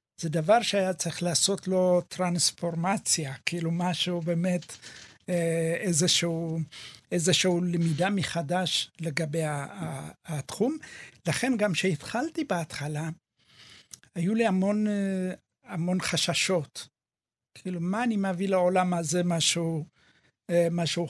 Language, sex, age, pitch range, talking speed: Hebrew, male, 60-79, 165-190 Hz, 95 wpm